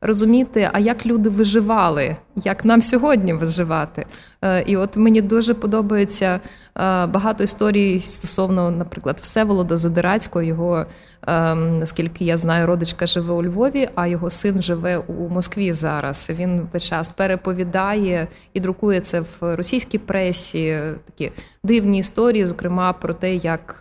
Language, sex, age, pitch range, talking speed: Ukrainian, female, 20-39, 170-205 Hz, 130 wpm